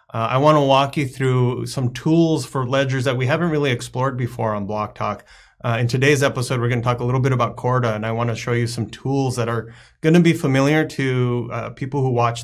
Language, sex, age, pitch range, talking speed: English, male, 30-49, 115-135 Hz, 240 wpm